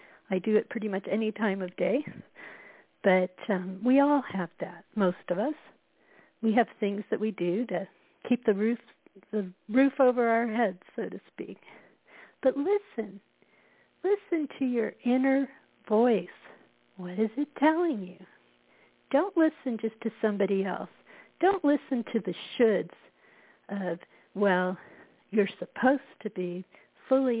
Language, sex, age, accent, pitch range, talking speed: English, female, 60-79, American, 190-240 Hz, 140 wpm